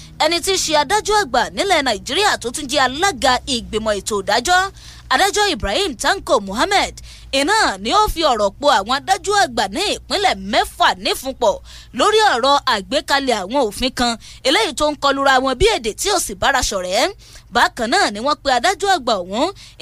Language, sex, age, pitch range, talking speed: English, female, 20-39, 265-385 Hz, 165 wpm